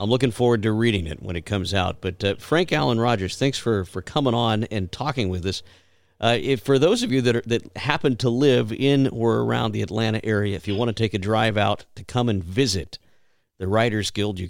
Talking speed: 240 wpm